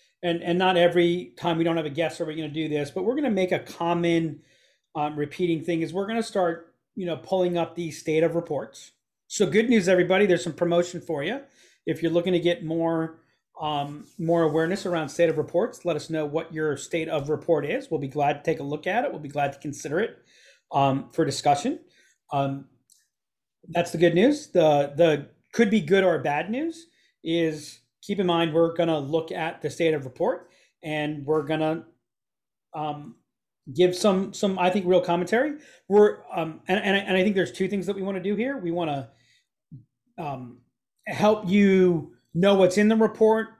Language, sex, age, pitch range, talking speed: English, male, 40-59, 150-185 Hz, 210 wpm